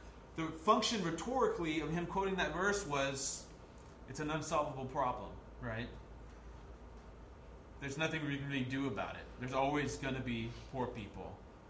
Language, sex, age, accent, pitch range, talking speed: English, male, 30-49, American, 120-160 Hz, 150 wpm